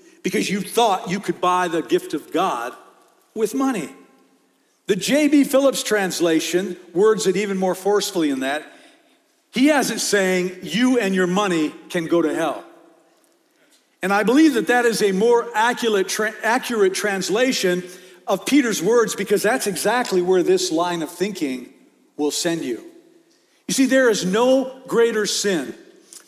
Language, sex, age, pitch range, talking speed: English, male, 50-69, 185-265 Hz, 150 wpm